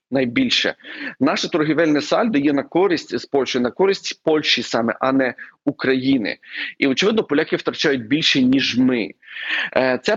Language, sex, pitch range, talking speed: Ukrainian, male, 125-155 Hz, 150 wpm